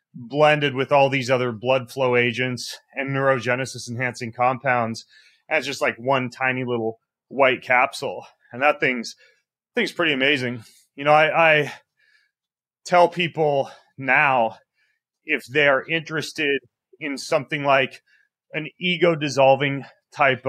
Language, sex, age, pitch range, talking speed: English, male, 30-49, 125-150 Hz, 130 wpm